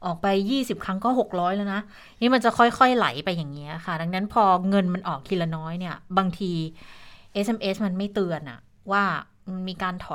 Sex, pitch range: female, 175-225 Hz